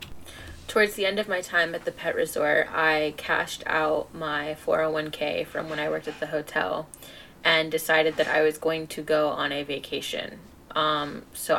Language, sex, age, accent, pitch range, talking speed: English, female, 20-39, American, 155-170 Hz, 180 wpm